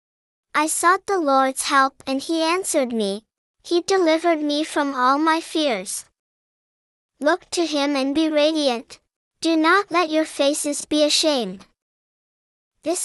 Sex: male